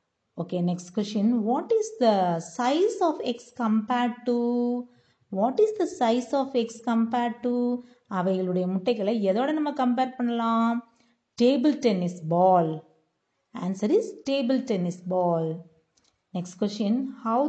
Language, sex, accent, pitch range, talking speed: Tamil, female, native, 180-250 Hz, 125 wpm